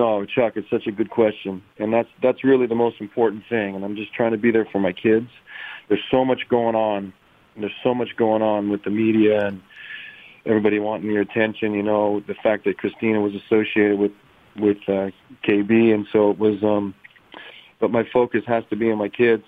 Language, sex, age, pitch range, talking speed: English, male, 40-59, 105-120 Hz, 215 wpm